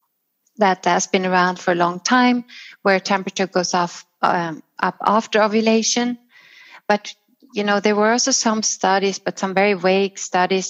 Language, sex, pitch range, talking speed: English, female, 180-225 Hz, 155 wpm